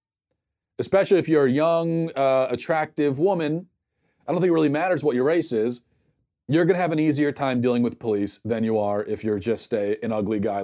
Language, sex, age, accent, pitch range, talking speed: English, male, 40-59, American, 110-150 Hz, 215 wpm